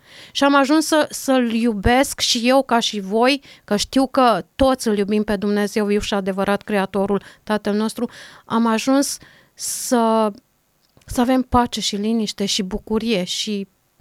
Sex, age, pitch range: female, 30-49, 215-280 Hz